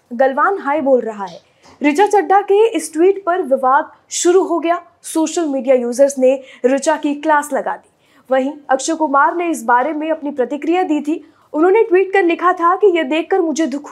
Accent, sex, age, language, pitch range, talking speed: native, female, 20-39, Hindi, 270-335 Hz, 195 wpm